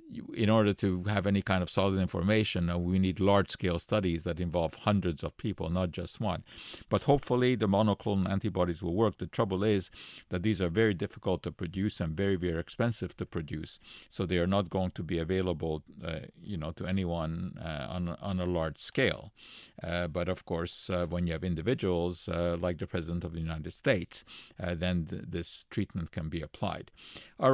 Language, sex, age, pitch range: English, male, 50-69, 90-105 Hz